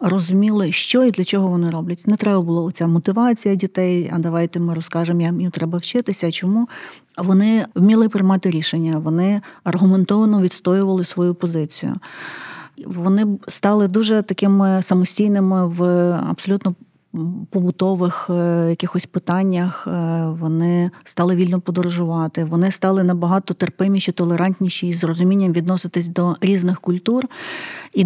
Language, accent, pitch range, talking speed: Ukrainian, native, 175-200 Hz, 125 wpm